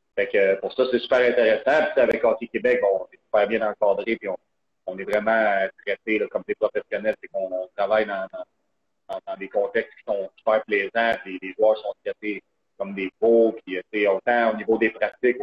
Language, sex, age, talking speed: French, male, 40-59, 200 wpm